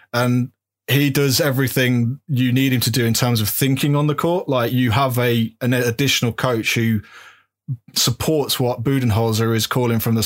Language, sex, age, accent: English, male, 20-39, British